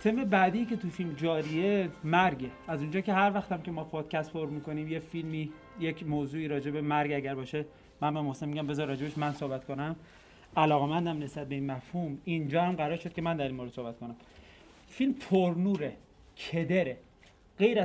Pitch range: 140-170 Hz